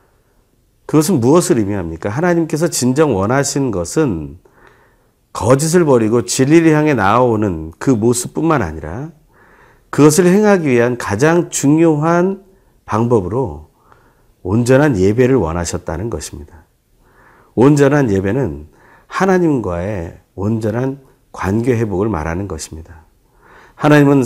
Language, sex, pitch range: Korean, male, 90-150 Hz